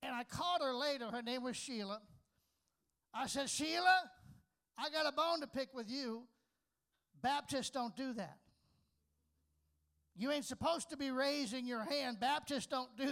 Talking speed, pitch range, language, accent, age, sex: 160 wpm, 215-275 Hz, English, American, 50-69, male